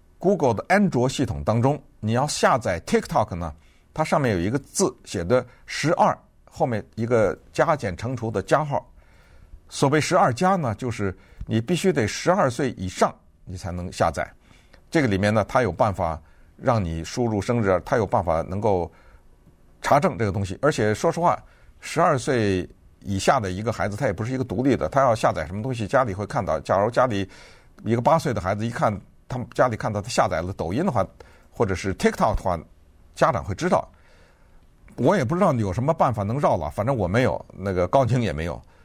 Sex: male